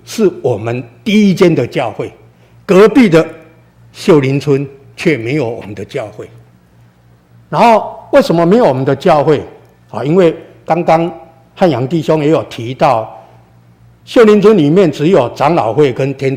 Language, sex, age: Chinese, male, 60-79